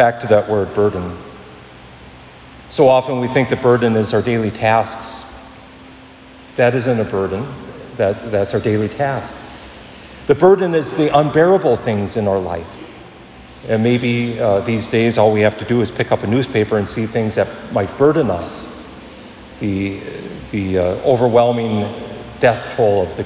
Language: English